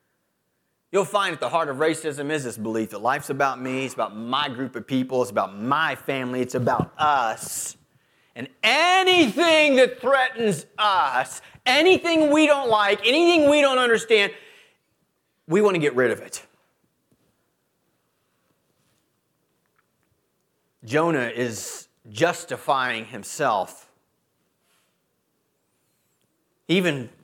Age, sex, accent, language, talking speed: 30-49, male, American, English, 115 wpm